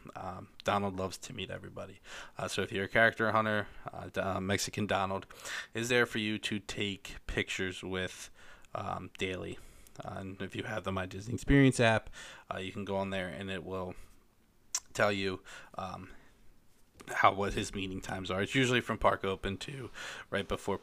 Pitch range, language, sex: 95-110 Hz, English, male